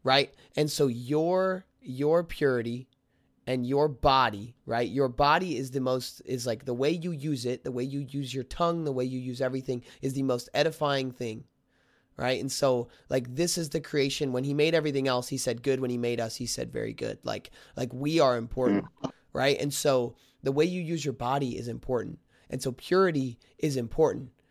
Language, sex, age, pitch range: English, male, 20-39, 125-150 Hz